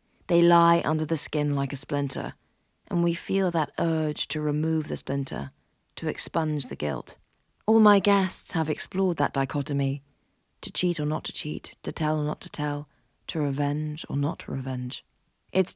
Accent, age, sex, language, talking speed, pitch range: British, 30-49, female, English, 180 wpm, 150-185 Hz